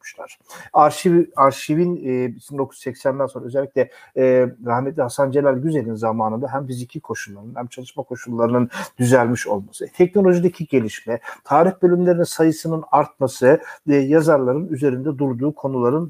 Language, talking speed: Turkish, 125 wpm